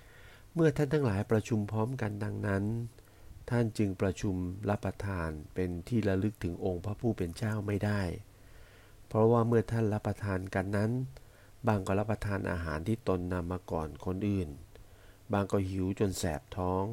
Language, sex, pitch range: Thai, male, 95-110 Hz